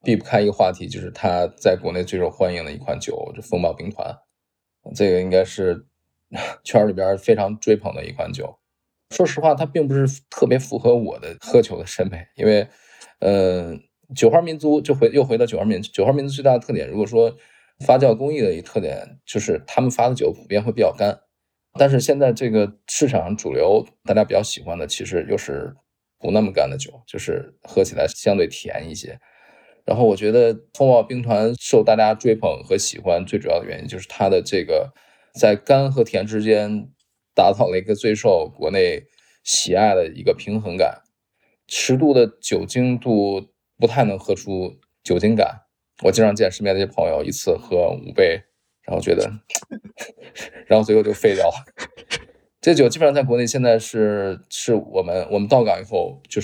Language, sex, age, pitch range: Chinese, male, 20-39, 100-150 Hz